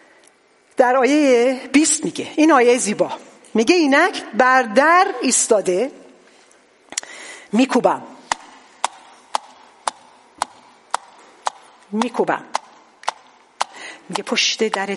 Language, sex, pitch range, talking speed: English, female, 195-300 Hz, 70 wpm